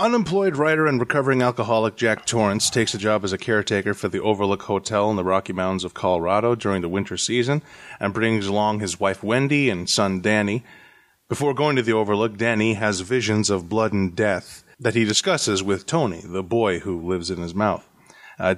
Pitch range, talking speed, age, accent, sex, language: 95-120 Hz, 195 wpm, 30-49, American, male, English